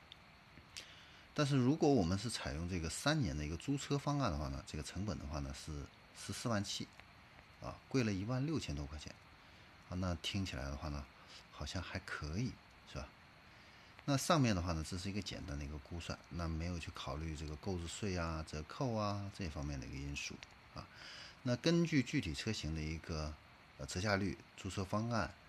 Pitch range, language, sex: 75-105 Hz, Chinese, male